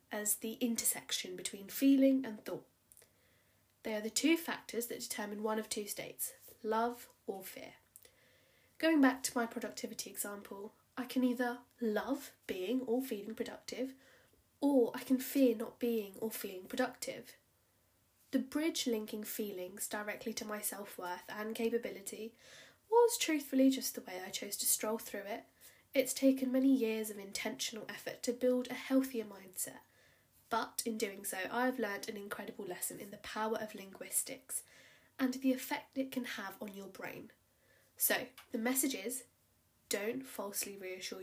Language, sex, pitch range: English, female, 215-265 Hz